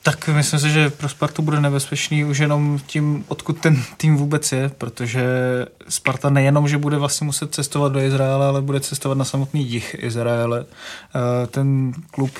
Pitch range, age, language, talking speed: 140-150 Hz, 20-39, Czech, 170 wpm